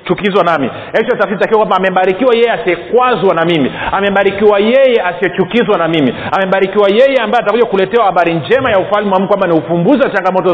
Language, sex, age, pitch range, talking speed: Swahili, male, 40-59, 175-230 Hz, 175 wpm